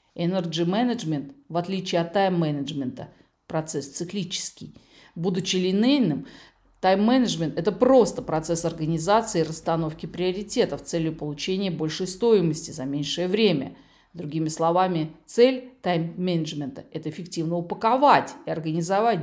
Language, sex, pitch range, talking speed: Russian, female, 165-205 Hz, 110 wpm